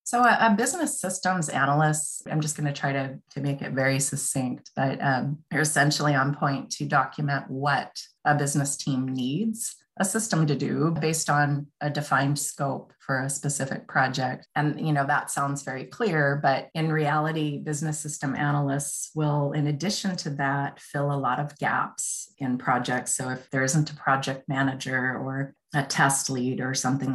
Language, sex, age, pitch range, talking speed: English, female, 30-49, 135-160 Hz, 180 wpm